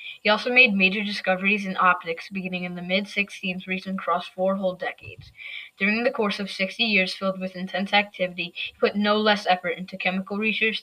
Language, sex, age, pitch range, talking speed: English, female, 10-29, 185-210 Hz, 190 wpm